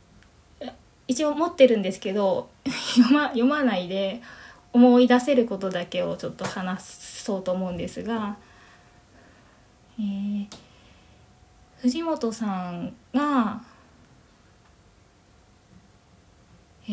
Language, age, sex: Japanese, 20-39, female